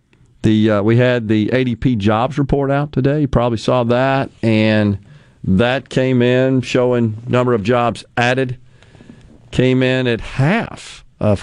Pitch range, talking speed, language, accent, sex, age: 110-130 Hz, 145 wpm, English, American, male, 50-69